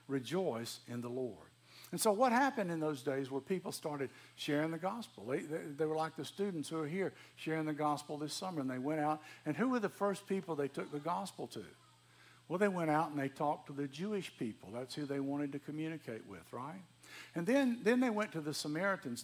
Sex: male